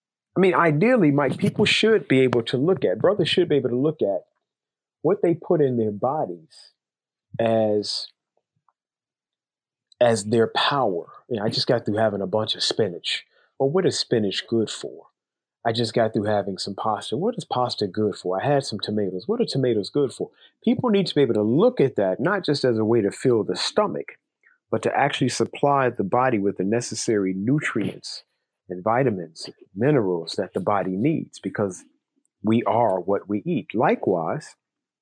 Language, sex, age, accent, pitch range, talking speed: English, male, 40-59, American, 110-150 Hz, 185 wpm